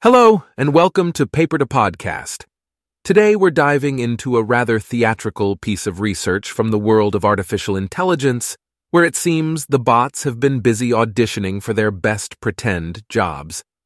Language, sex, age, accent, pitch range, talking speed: English, male, 30-49, American, 105-135 Hz, 160 wpm